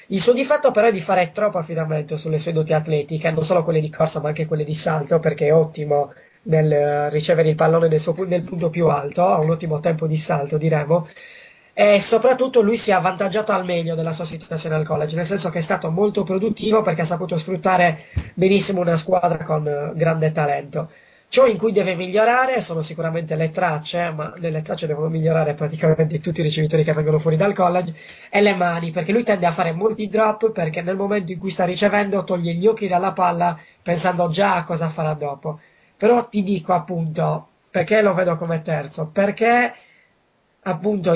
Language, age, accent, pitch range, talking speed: Italian, 20-39, native, 160-195 Hz, 195 wpm